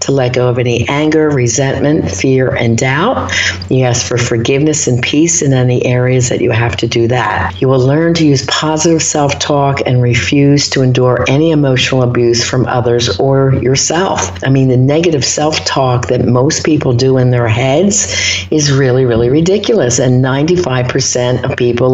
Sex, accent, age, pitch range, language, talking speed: female, American, 50-69, 120-145 Hz, English, 175 wpm